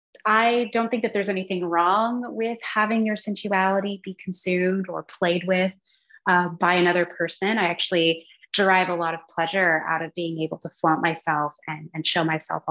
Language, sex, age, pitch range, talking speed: English, female, 20-39, 160-195 Hz, 180 wpm